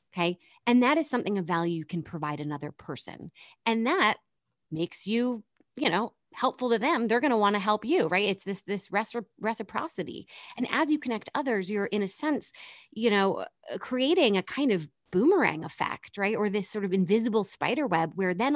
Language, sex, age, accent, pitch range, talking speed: English, female, 30-49, American, 175-255 Hz, 195 wpm